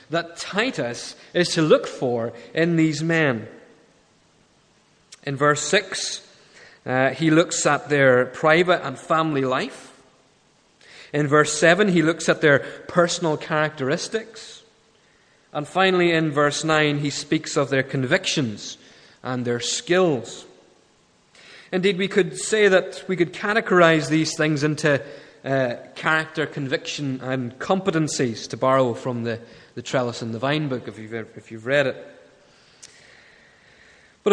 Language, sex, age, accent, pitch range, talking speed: English, male, 30-49, British, 140-185 Hz, 135 wpm